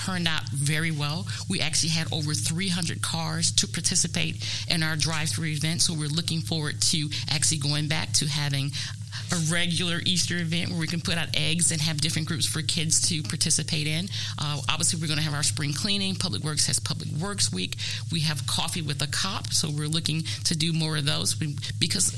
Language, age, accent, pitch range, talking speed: English, 40-59, American, 125-160 Hz, 205 wpm